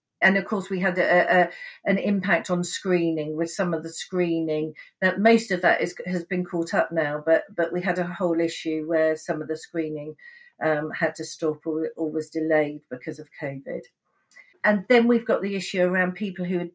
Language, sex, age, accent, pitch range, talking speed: English, female, 50-69, British, 160-195 Hz, 210 wpm